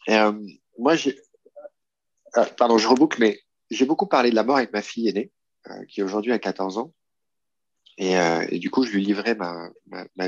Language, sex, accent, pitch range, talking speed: French, male, French, 95-120 Hz, 210 wpm